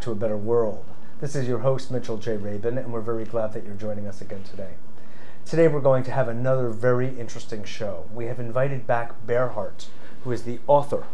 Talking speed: 210 wpm